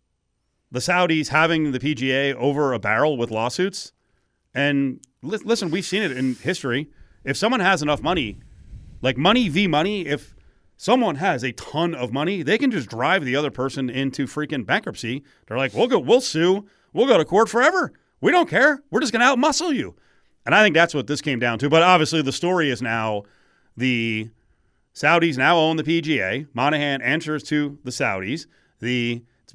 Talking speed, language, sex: 185 wpm, English, male